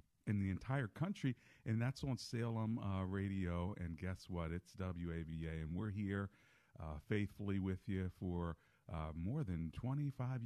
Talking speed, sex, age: 155 wpm, male, 50-69